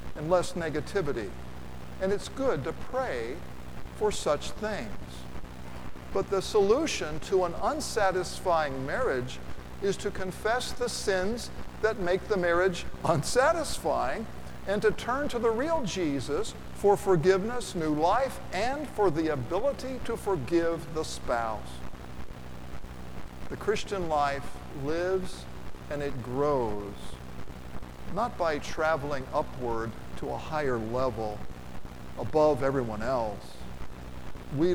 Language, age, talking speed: English, 50-69, 115 wpm